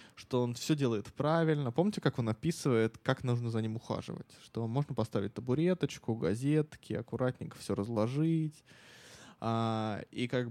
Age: 20-39